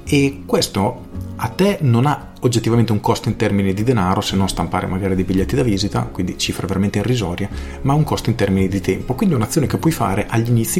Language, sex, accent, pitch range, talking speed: Italian, male, native, 95-120 Hz, 220 wpm